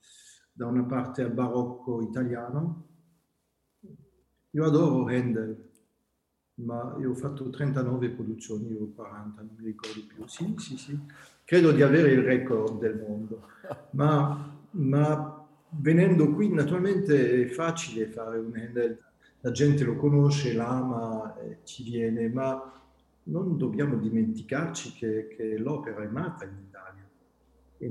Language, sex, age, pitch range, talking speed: Italian, male, 50-69, 110-135 Hz, 130 wpm